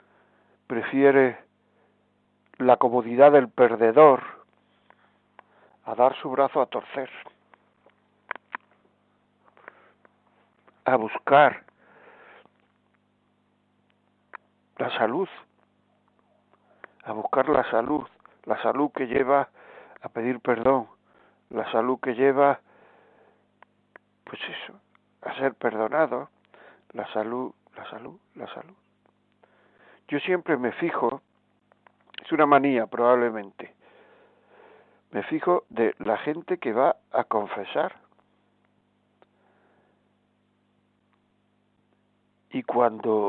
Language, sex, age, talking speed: Spanish, male, 60-79, 85 wpm